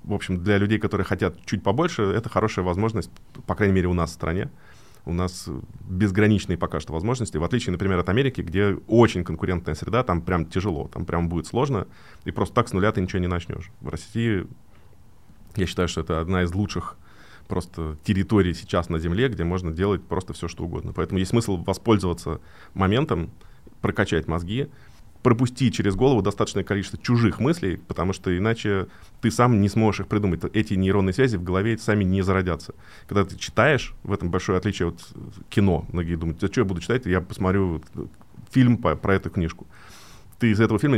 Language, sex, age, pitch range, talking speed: Russian, male, 20-39, 90-110 Hz, 185 wpm